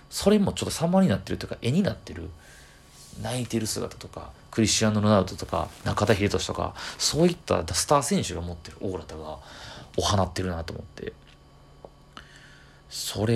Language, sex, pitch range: Japanese, male, 90-110 Hz